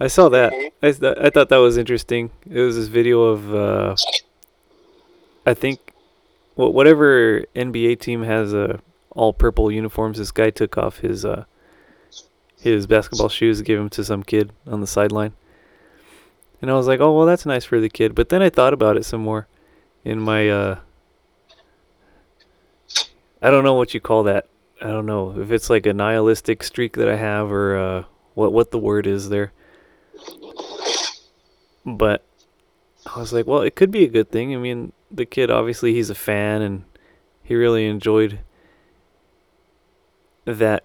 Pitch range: 105-120 Hz